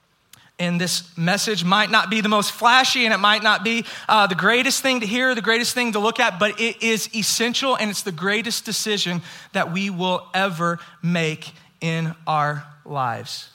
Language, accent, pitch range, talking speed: English, American, 135-185 Hz, 190 wpm